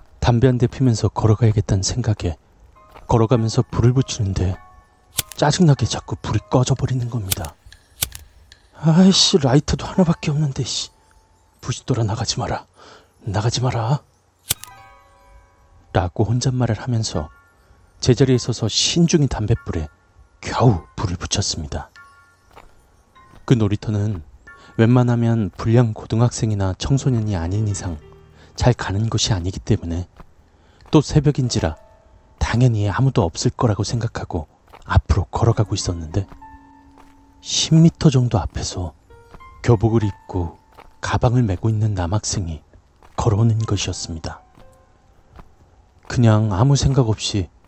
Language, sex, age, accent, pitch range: Korean, male, 30-49, native, 90-120 Hz